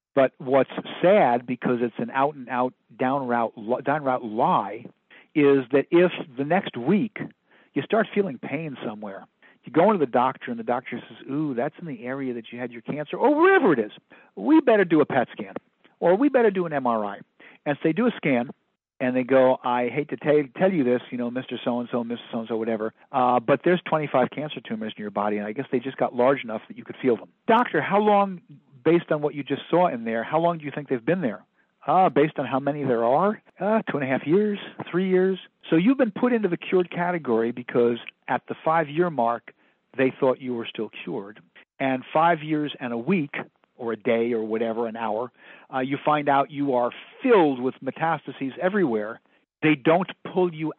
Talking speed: 215 wpm